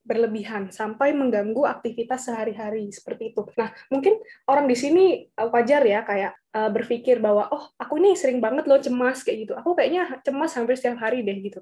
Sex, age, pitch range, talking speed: female, 20-39, 225-275 Hz, 175 wpm